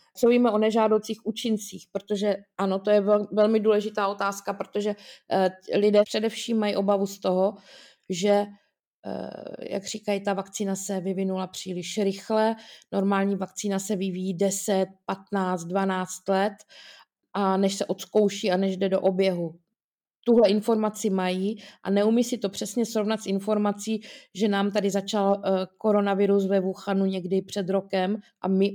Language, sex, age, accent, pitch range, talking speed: Czech, female, 20-39, native, 190-210 Hz, 140 wpm